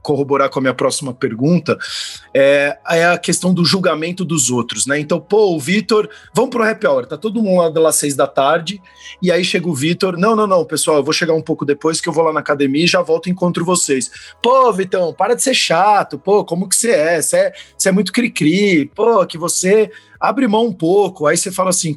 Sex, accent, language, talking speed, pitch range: male, Brazilian, Portuguese, 230 wpm, 150-195 Hz